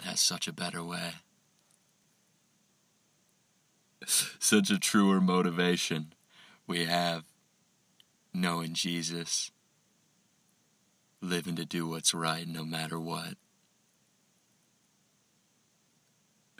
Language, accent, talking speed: English, American, 75 wpm